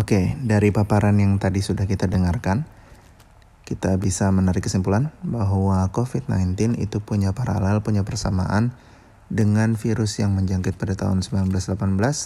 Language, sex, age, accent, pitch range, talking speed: Indonesian, male, 30-49, native, 95-105 Hz, 130 wpm